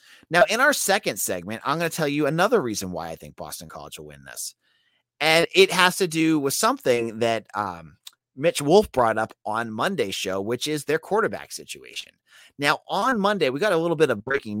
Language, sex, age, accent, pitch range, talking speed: English, male, 30-49, American, 110-170 Hz, 210 wpm